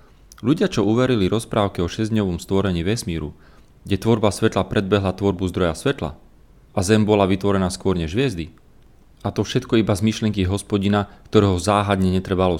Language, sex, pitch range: Slovak, male, 95-115 Hz